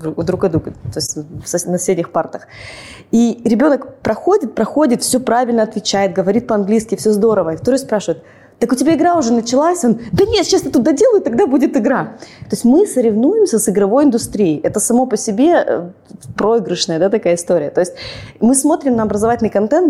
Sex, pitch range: female, 180-245 Hz